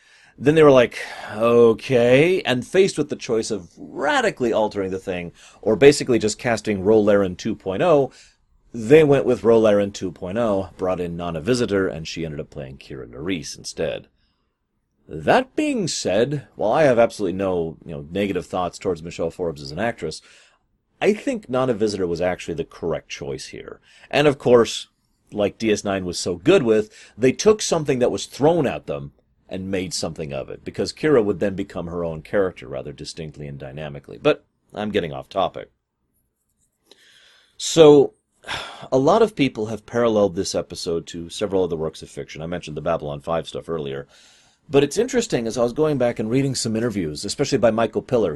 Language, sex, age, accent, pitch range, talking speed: English, male, 30-49, American, 95-130 Hz, 175 wpm